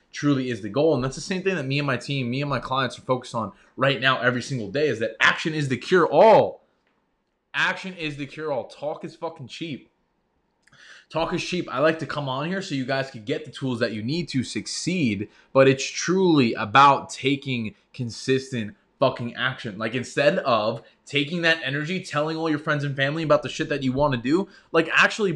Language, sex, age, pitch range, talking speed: English, male, 20-39, 125-160 Hz, 220 wpm